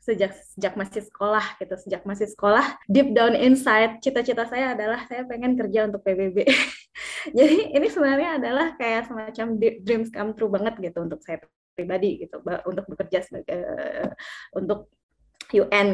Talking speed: 150 wpm